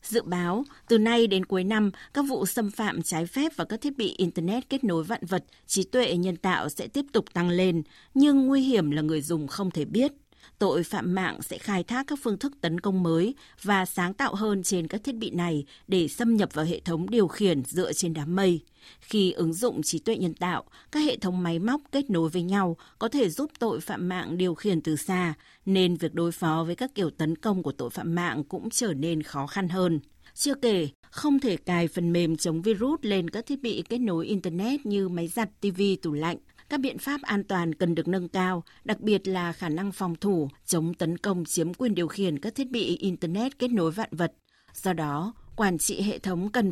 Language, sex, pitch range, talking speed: Vietnamese, female, 170-225 Hz, 230 wpm